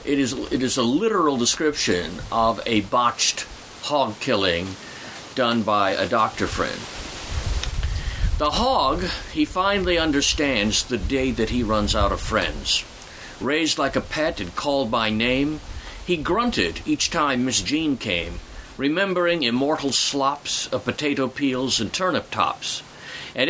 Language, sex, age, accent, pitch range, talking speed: English, male, 50-69, American, 110-165 Hz, 140 wpm